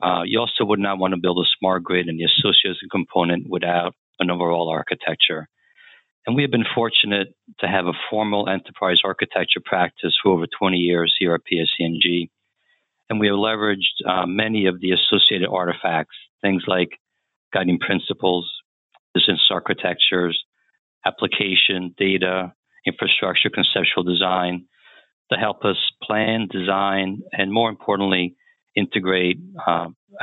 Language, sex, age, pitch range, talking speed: English, male, 50-69, 90-100 Hz, 135 wpm